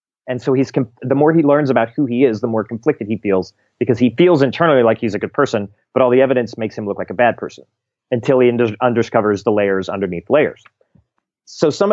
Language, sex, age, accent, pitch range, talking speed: English, male, 30-49, American, 105-125 Hz, 230 wpm